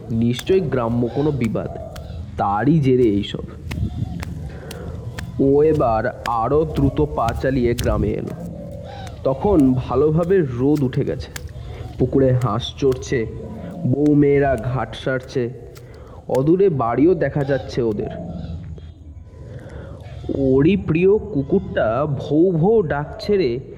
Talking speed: 90 wpm